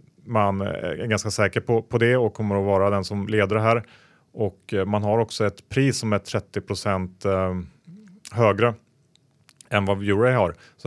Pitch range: 95-115 Hz